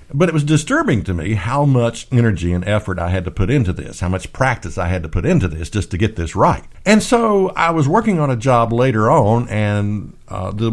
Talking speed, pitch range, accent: 245 wpm, 105-155 Hz, American